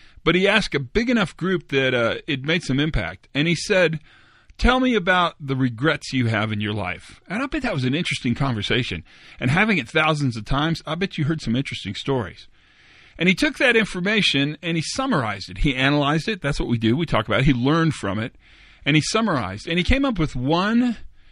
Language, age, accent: English, 40-59, American